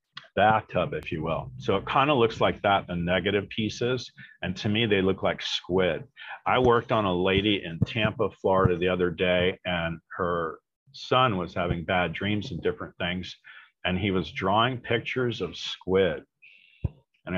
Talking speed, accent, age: 175 wpm, American, 40-59